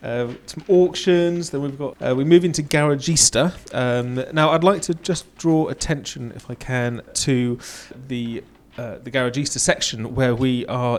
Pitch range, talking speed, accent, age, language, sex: 110-135 Hz, 170 wpm, British, 30-49, English, male